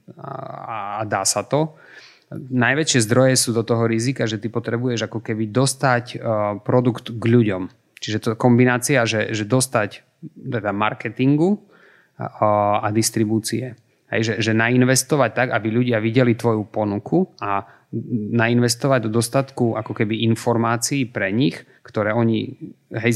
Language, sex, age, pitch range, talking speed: Slovak, male, 30-49, 110-130 Hz, 125 wpm